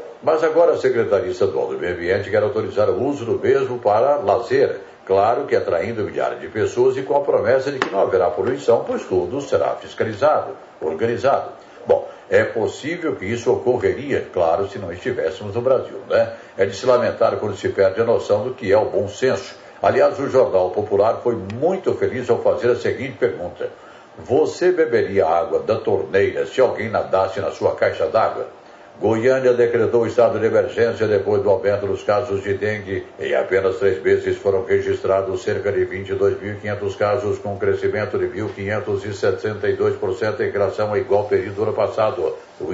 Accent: Brazilian